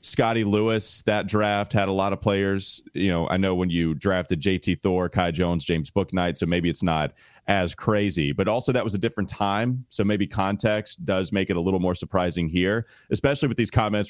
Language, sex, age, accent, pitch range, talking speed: English, male, 30-49, American, 90-115 Hz, 215 wpm